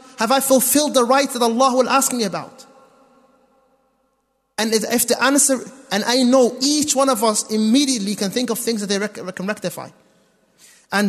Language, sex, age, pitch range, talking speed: English, male, 30-49, 205-265 Hz, 175 wpm